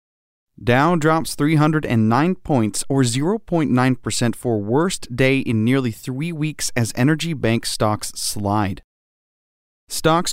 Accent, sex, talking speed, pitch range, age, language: American, male, 115 wpm, 110-145 Hz, 30-49, English